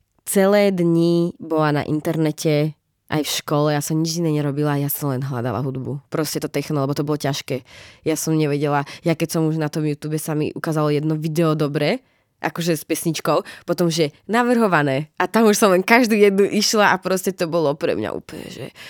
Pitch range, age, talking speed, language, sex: 150-180 Hz, 20-39, 195 wpm, Czech, female